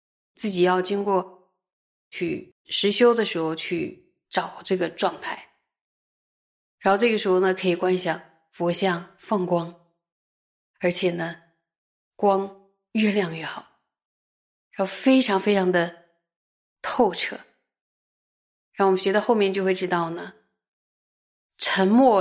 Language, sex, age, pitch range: Chinese, female, 20-39, 175-205 Hz